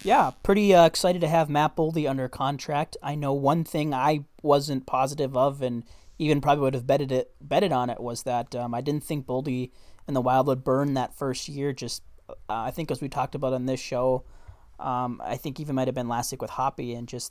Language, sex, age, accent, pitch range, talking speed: English, male, 20-39, American, 120-145 Hz, 230 wpm